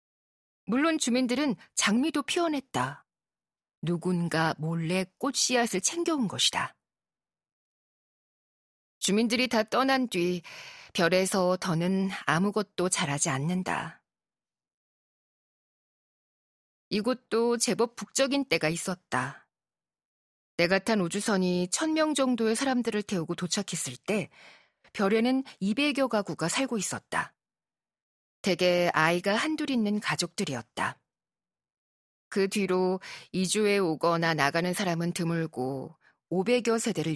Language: Korean